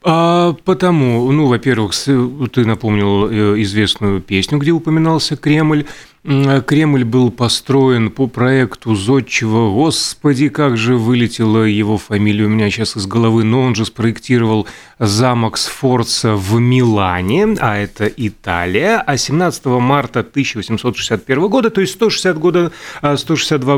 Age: 30-49